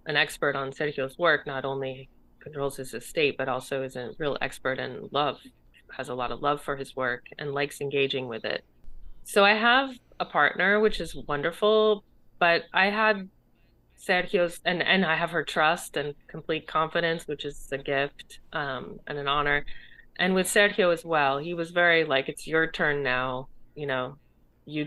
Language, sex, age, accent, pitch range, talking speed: English, female, 30-49, American, 135-165 Hz, 185 wpm